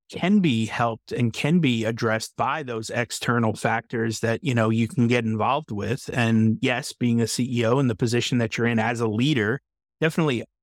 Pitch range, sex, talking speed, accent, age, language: 115-145 Hz, male, 190 wpm, American, 30-49, English